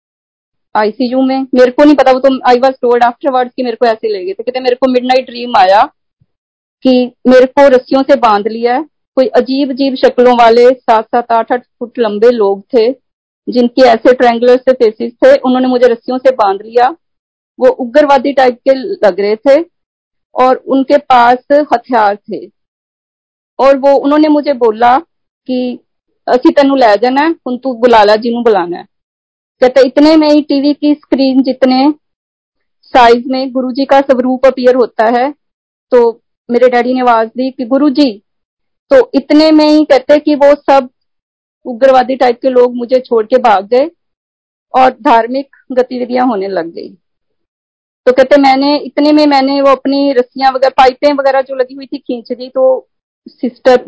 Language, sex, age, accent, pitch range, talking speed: Hindi, female, 40-59, native, 245-275 Hz, 165 wpm